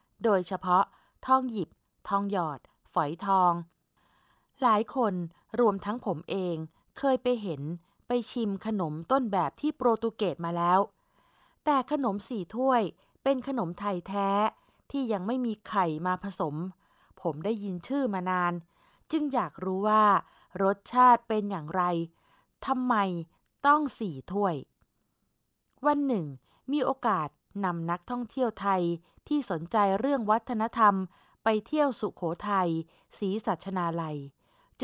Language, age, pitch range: Thai, 20-39, 180-230 Hz